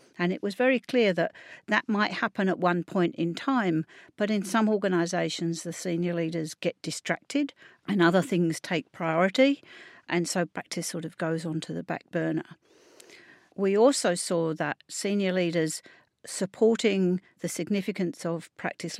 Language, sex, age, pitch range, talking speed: English, female, 50-69, 165-205 Hz, 160 wpm